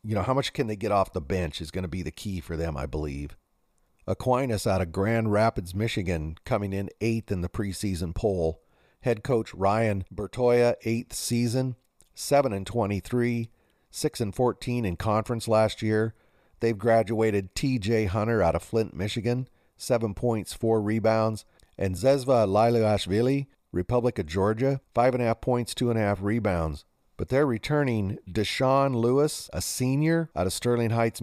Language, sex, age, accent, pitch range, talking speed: English, male, 40-59, American, 95-120 Hz, 165 wpm